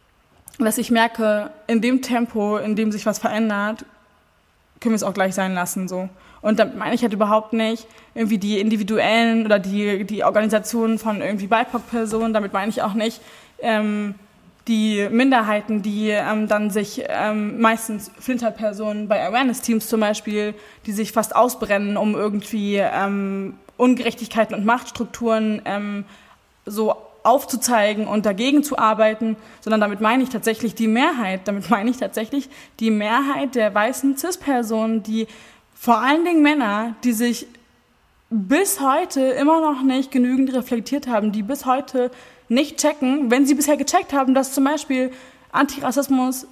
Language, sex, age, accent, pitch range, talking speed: German, female, 20-39, German, 215-255 Hz, 150 wpm